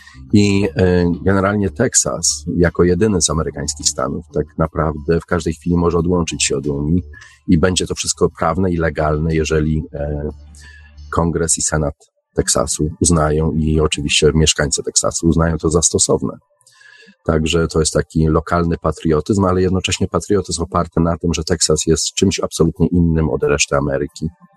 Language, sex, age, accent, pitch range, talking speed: Polish, male, 40-59, native, 75-90 Hz, 145 wpm